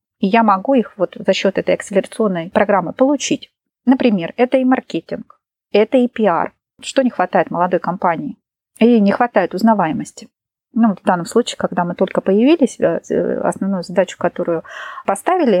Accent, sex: native, female